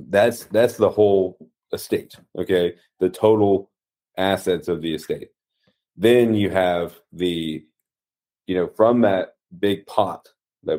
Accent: American